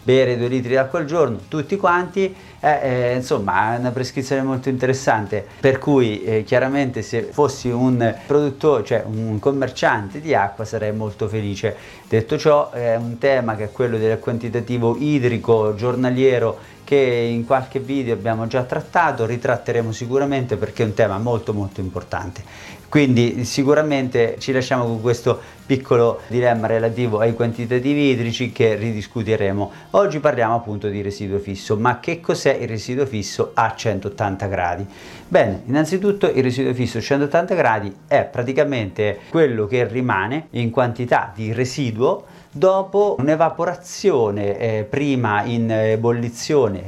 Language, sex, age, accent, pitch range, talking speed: Italian, male, 30-49, native, 110-140 Hz, 140 wpm